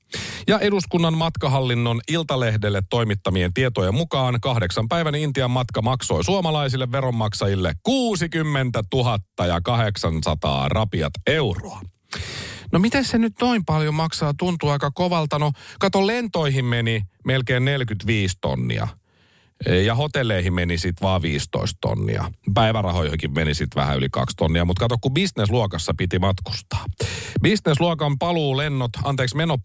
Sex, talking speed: male, 120 wpm